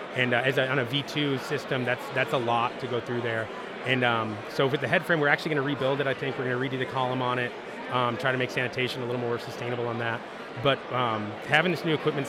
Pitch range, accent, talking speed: 120-135 Hz, American, 265 wpm